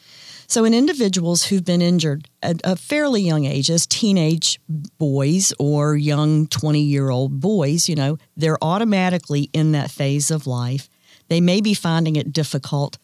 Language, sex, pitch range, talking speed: English, female, 145-180 Hz, 150 wpm